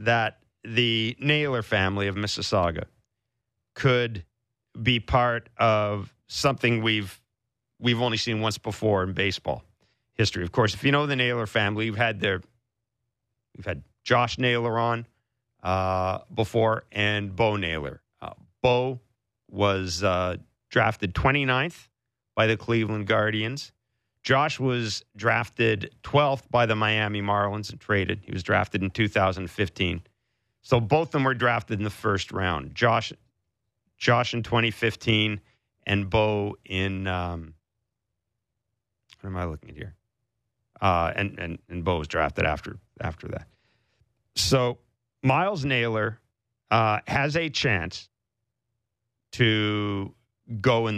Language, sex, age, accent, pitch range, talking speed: English, male, 40-59, American, 100-120 Hz, 130 wpm